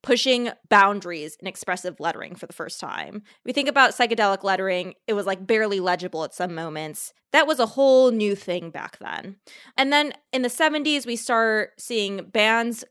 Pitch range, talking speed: 195-250 Hz, 180 wpm